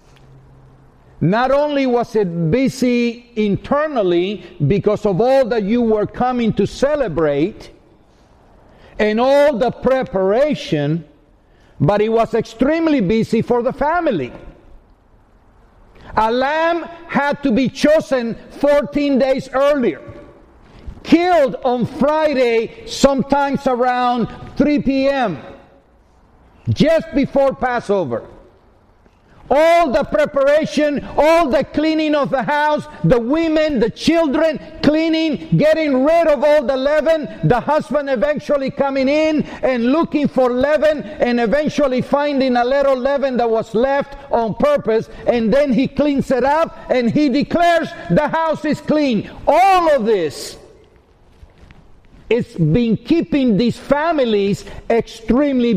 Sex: male